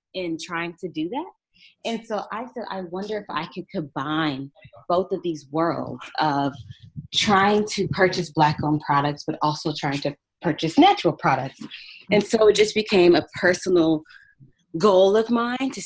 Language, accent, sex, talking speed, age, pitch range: English, American, female, 165 wpm, 20-39, 155-225 Hz